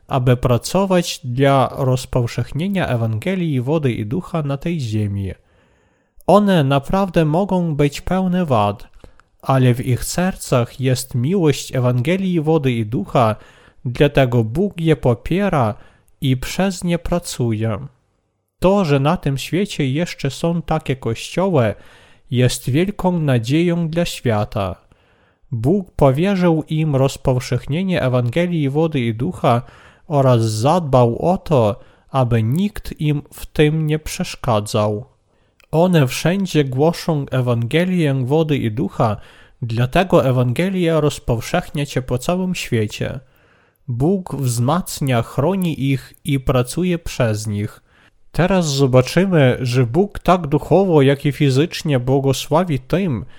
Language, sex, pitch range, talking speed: Polish, male, 125-170 Hz, 115 wpm